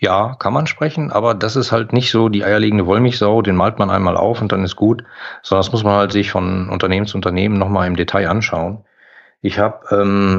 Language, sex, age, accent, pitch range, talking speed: German, male, 40-59, German, 95-110 Hz, 225 wpm